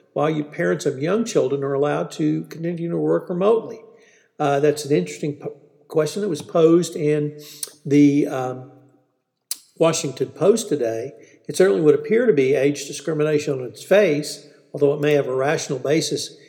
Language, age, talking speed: English, 50-69, 165 wpm